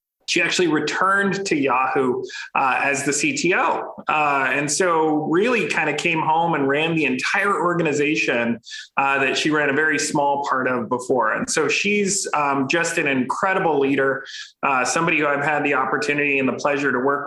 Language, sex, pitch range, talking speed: English, male, 135-190 Hz, 180 wpm